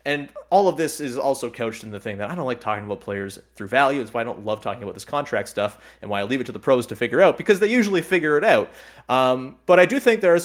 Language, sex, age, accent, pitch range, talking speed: English, male, 30-49, American, 115-145 Hz, 305 wpm